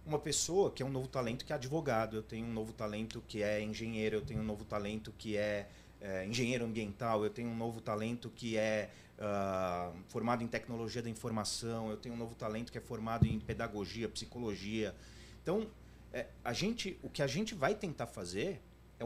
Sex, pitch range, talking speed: male, 110-160 Hz, 200 wpm